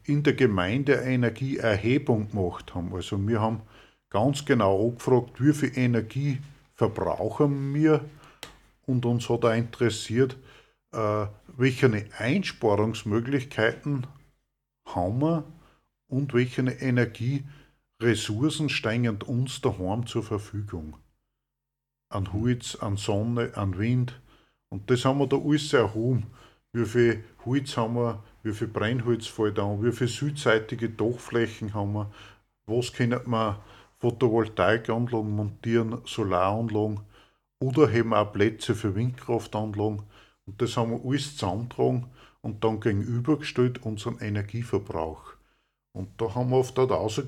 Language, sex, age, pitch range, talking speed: German, male, 50-69, 105-130 Hz, 120 wpm